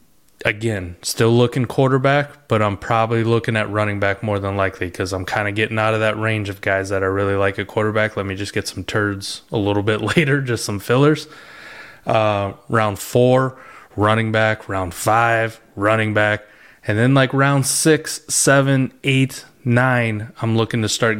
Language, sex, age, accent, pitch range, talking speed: English, male, 20-39, American, 100-115 Hz, 185 wpm